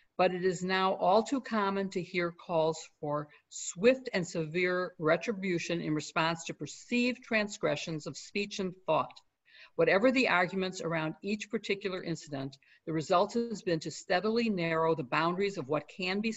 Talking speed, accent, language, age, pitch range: 160 wpm, American, English, 50-69, 160-195 Hz